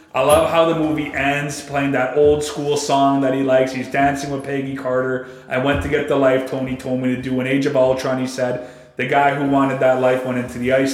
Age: 30-49